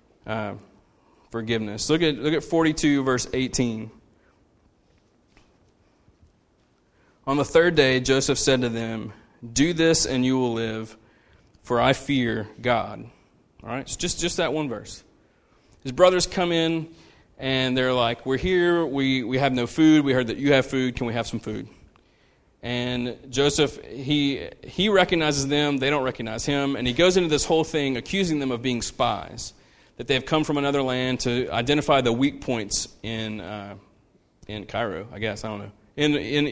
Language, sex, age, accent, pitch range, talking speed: English, male, 30-49, American, 115-145 Hz, 170 wpm